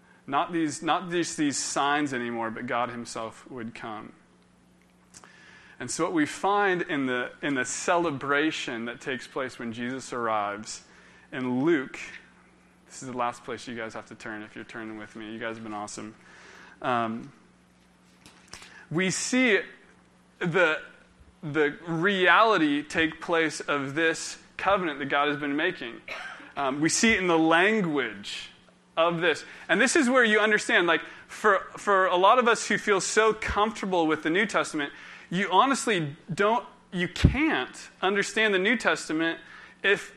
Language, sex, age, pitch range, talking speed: English, male, 20-39, 125-200 Hz, 160 wpm